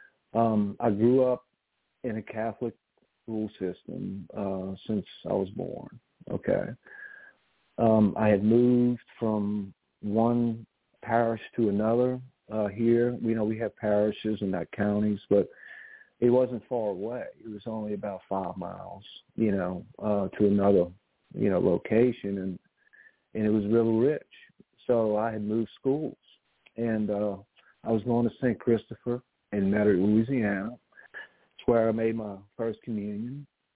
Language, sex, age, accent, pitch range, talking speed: English, male, 50-69, American, 105-120 Hz, 145 wpm